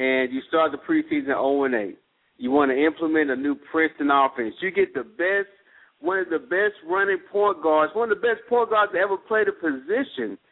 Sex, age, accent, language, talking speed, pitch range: male, 50-69, American, English, 205 wpm, 145-210 Hz